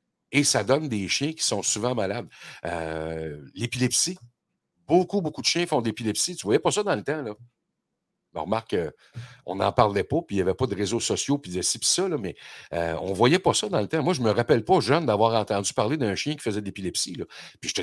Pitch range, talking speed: 95-140 Hz, 250 wpm